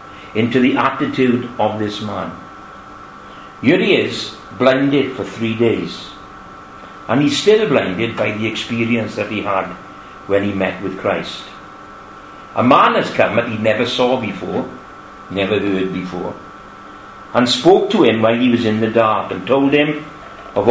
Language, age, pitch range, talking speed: English, 60-79, 100-135 Hz, 155 wpm